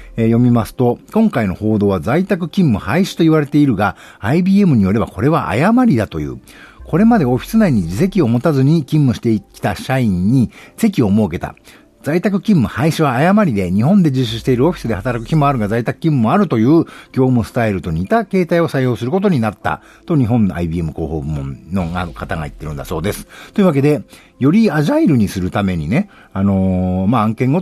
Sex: male